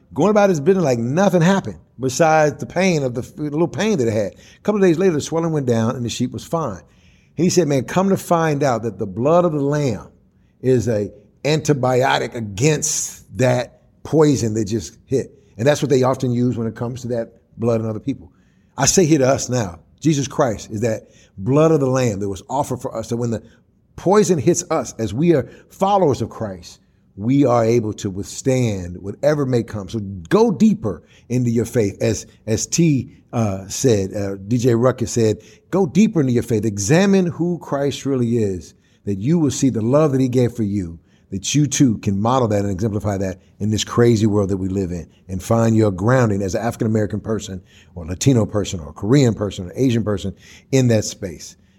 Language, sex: English, male